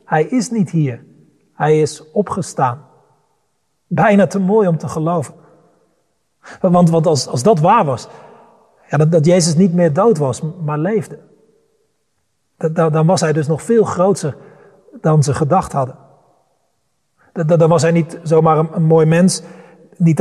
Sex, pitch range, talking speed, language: male, 160-190 Hz, 155 wpm, Dutch